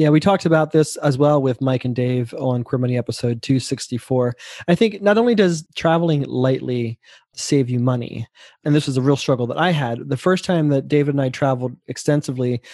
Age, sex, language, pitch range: 20-39, male, English, 130-155 Hz